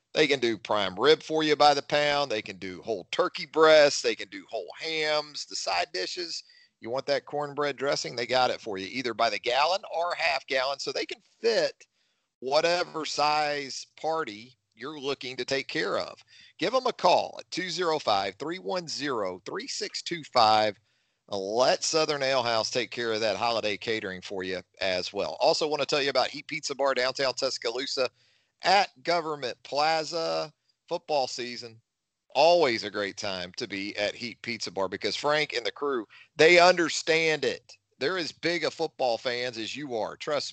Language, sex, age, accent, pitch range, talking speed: English, male, 40-59, American, 115-160 Hz, 175 wpm